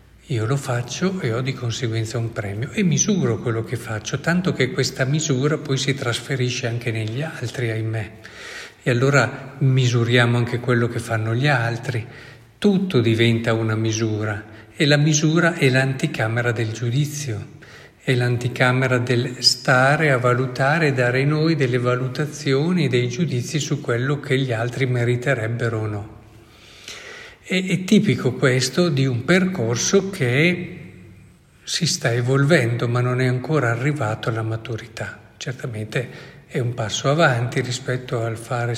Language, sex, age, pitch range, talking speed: Italian, male, 50-69, 115-140 Hz, 140 wpm